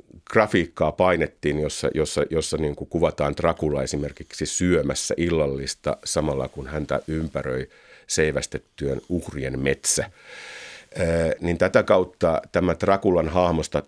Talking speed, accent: 110 wpm, native